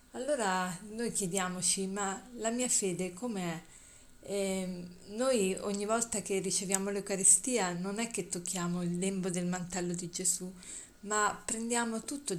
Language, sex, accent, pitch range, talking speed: Italian, female, native, 180-215 Hz, 130 wpm